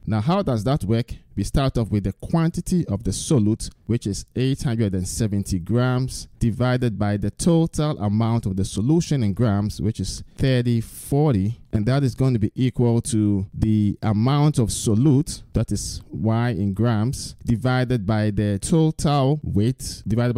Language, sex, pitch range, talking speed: English, male, 100-125 Hz, 160 wpm